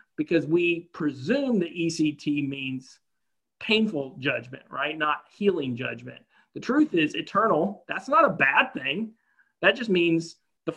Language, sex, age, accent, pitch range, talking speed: English, male, 40-59, American, 145-200 Hz, 140 wpm